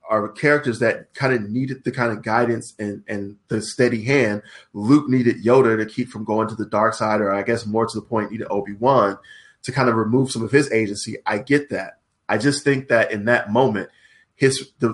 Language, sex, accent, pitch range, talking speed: English, male, American, 110-130 Hz, 220 wpm